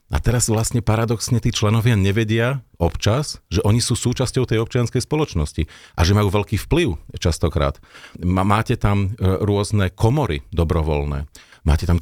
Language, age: Slovak, 40-59